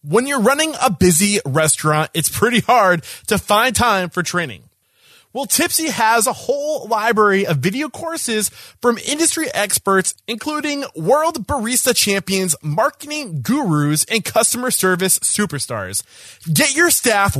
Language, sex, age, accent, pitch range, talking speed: English, male, 20-39, American, 150-240 Hz, 135 wpm